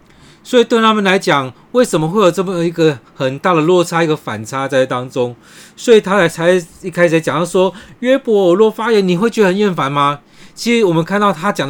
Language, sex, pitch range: Chinese, male, 130-180 Hz